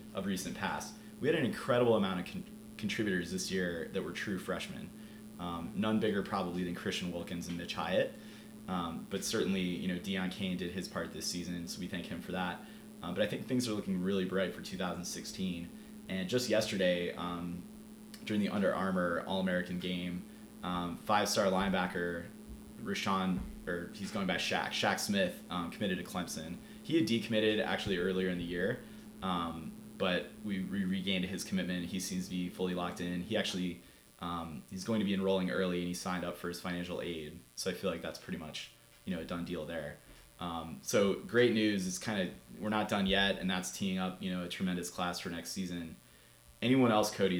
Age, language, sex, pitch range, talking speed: 20-39, English, male, 90-105 Hz, 200 wpm